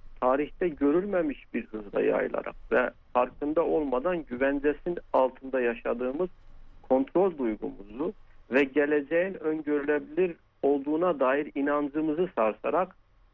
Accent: native